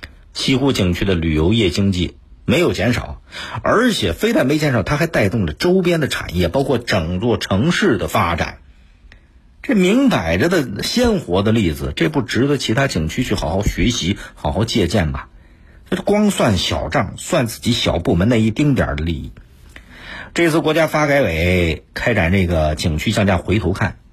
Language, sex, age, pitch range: Chinese, male, 50-69, 80-120 Hz